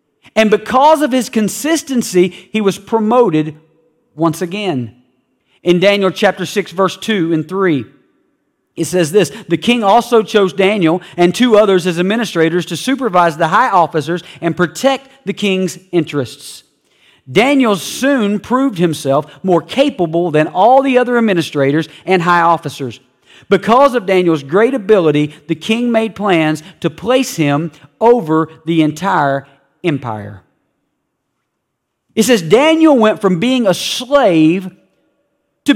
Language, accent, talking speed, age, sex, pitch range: English, American, 135 wpm, 40-59, male, 155-215 Hz